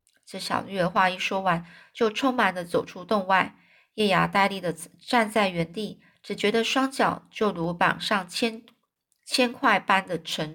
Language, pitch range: Chinese, 175-220 Hz